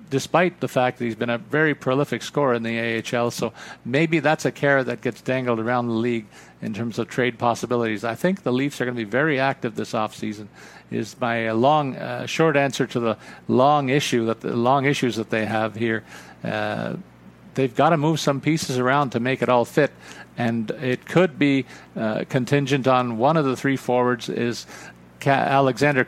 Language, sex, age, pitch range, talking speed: English, male, 50-69, 115-140 Hz, 200 wpm